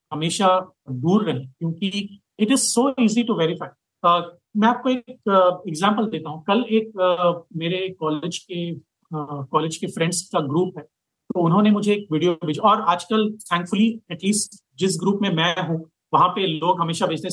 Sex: male